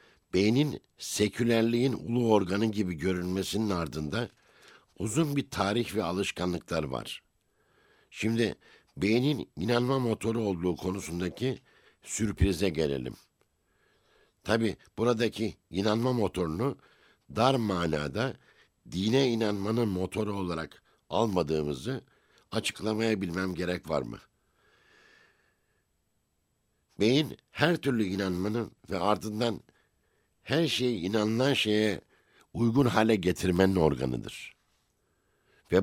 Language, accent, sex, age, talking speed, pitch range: Turkish, native, male, 60-79, 85 wpm, 90-115 Hz